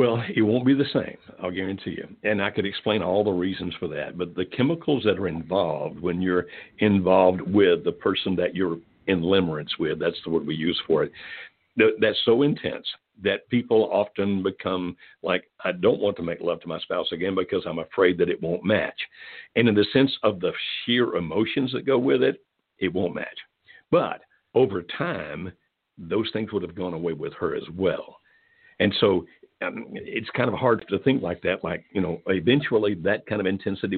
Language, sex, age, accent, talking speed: English, male, 60-79, American, 200 wpm